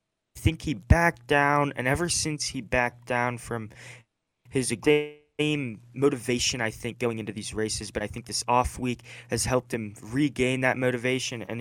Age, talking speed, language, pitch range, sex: 20-39, 170 wpm, English, 115-130 Hz, male